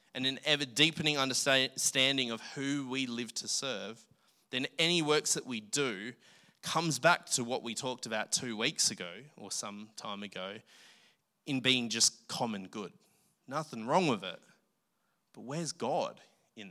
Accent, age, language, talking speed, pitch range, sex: Australian, 20-39, English, 155 wpm, 115-150 Hz, male